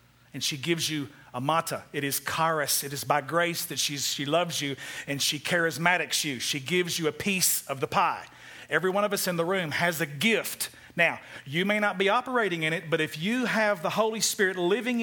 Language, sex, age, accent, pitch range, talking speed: English, male, 40-59, American, 145-190 Hz, 225 wpm